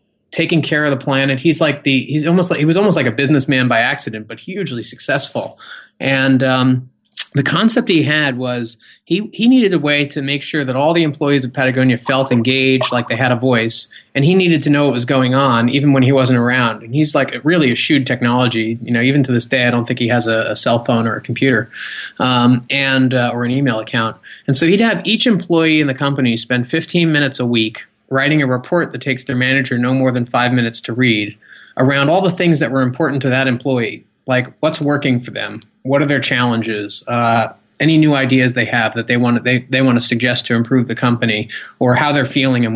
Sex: male